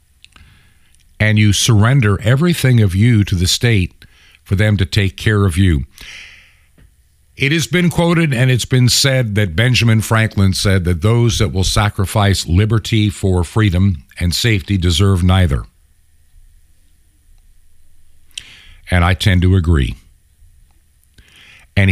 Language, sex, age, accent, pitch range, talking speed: English, male, 50-69, American, 80-110 Hz, 125 wpm